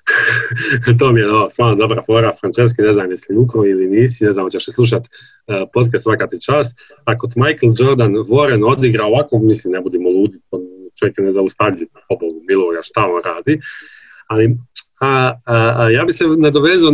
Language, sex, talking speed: Croatian, male, 185 wpm